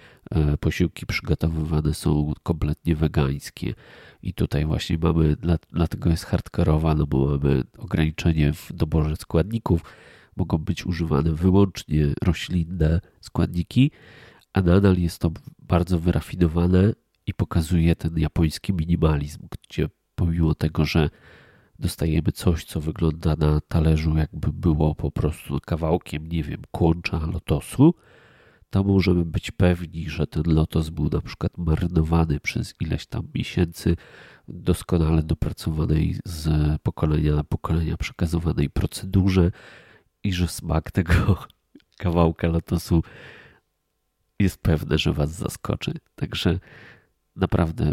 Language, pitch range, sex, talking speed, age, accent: Polish, 80-90 Hz, male, 115 wpm, 30-49, native